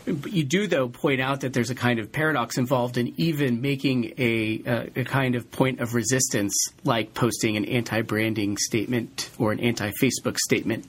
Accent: American